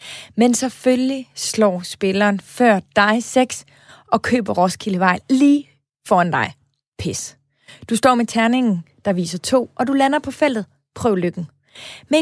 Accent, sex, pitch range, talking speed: native, female, 180-255 Hz, 140 wpm